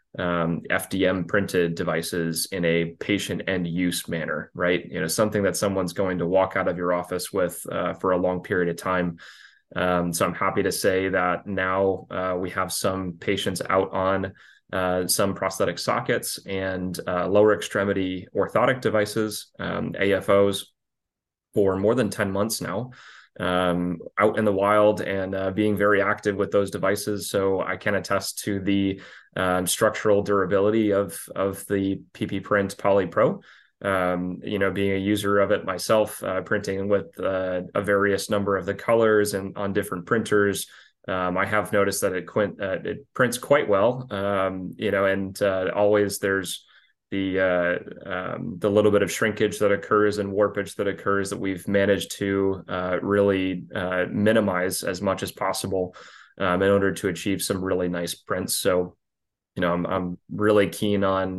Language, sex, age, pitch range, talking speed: English, male, 20-39, 90-100 Hz, 175 wpm